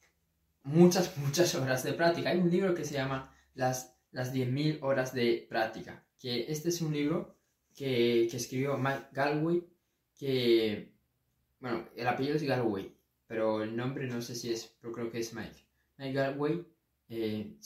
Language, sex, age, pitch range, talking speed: Spanish, male, 20-39, 115-150 Hz, 165 wpm